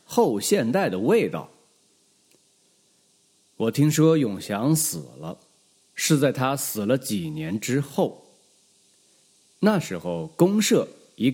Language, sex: Chinese, male